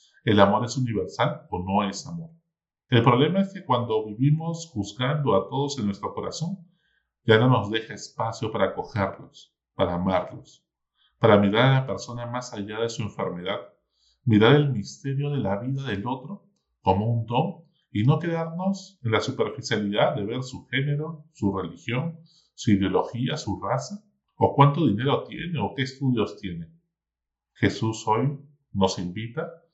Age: 40-59